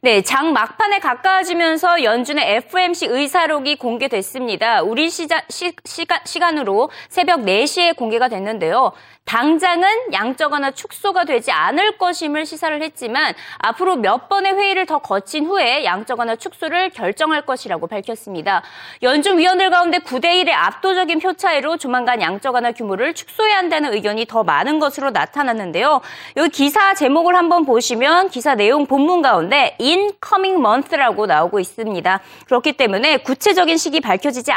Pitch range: 245-355 Hz